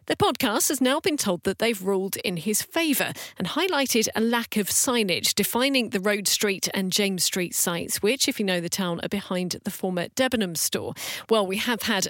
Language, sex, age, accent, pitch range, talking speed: English, female, 40-59, British, 185-235 Hz, 210 wpm